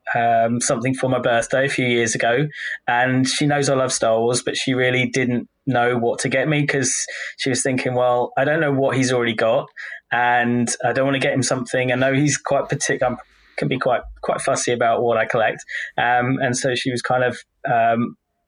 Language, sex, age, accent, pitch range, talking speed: English, male, 20-39, British, 125-140 Hz, 220 wpm